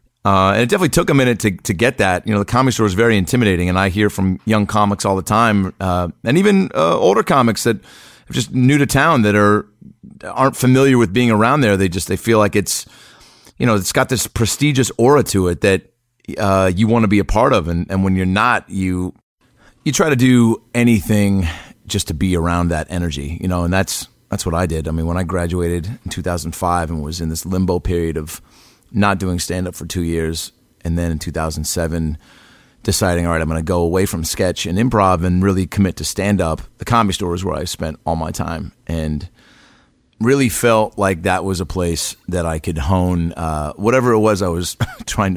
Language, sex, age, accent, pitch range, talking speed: English, male, 30-49, American, 85-110 Hz, 230 wpm